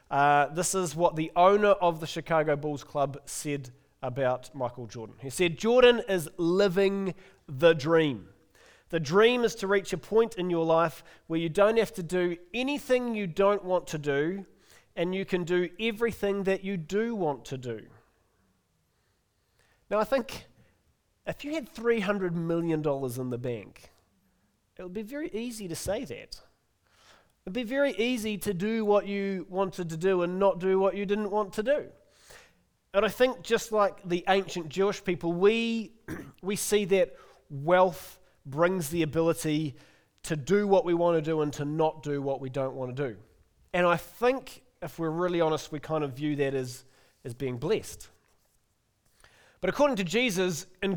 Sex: male